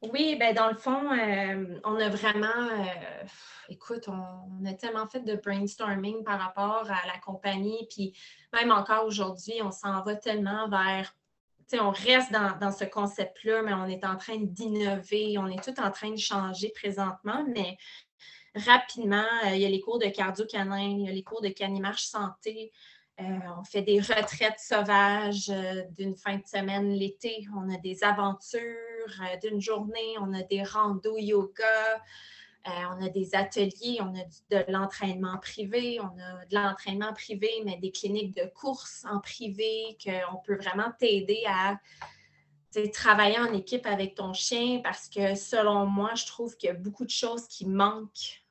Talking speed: 175 wpm